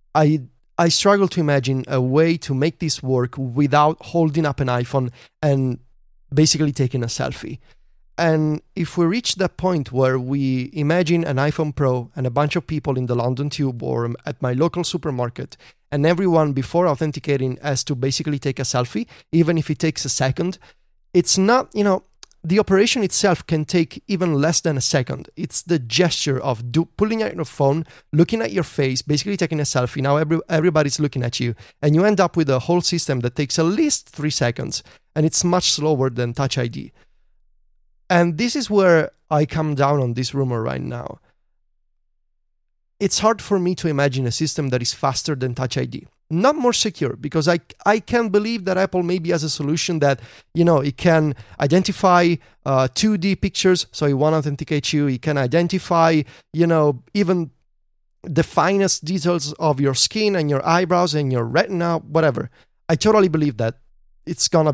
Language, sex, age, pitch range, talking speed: English, male, 30-49, 135-175 Hz, 185 wpm